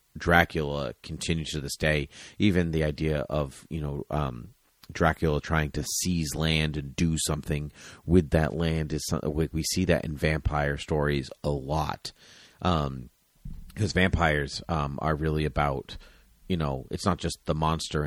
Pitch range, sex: 75-85 Hz, male